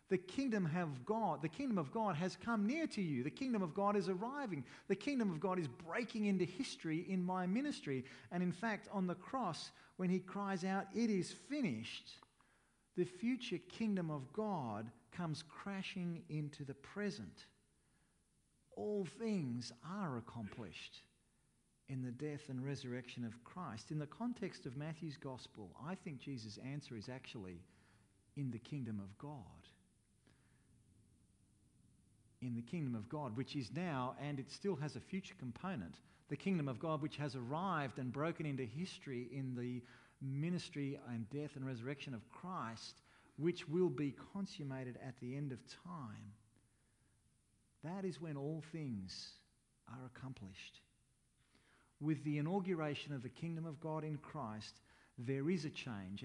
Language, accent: English, Australian